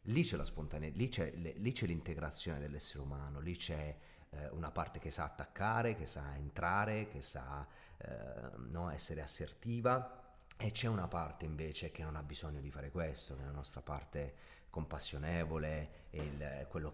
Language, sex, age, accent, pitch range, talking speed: Italian, male, 30-49, native, 75-95 Hz, 170 wpm